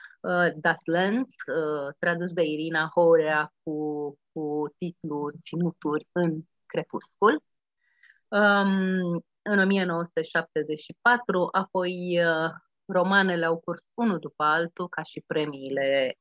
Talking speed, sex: 90 wpm, female